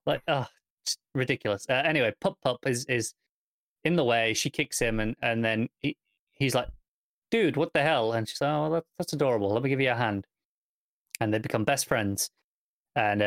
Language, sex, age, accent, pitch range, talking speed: English, male, 30-49, British, 110-135 Hz, 200 wpm